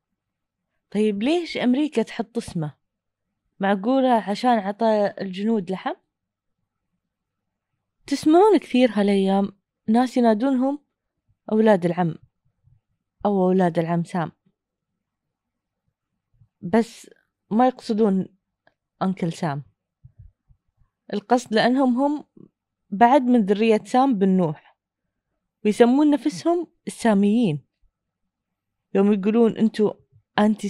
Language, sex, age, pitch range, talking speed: Arabic, female, 20-39, 185-255 Hz, 80 wpm